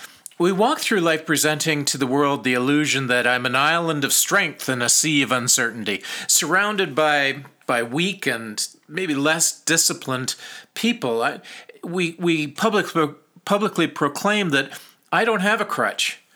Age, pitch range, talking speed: 40-59, 130-175 Hz, 155 wpm